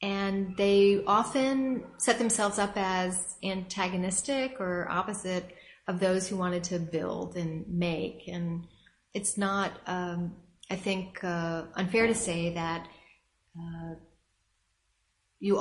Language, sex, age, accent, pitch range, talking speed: English, female, 30-49, American, 170-190 Hz, 120 wpm